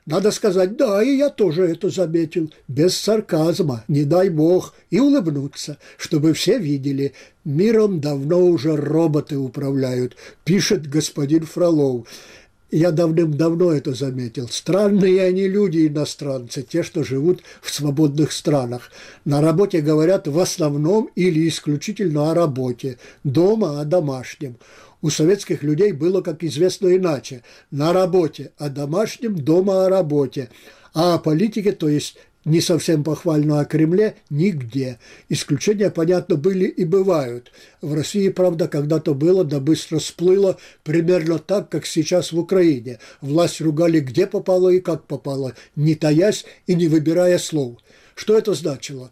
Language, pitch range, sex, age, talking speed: Russian, 145-185 Hz, male, 60-79, 135 wpm